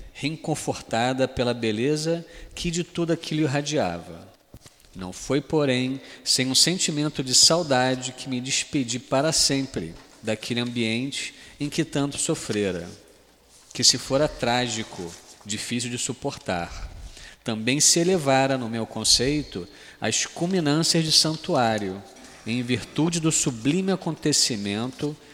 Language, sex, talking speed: Portuguese, male, 115 wpm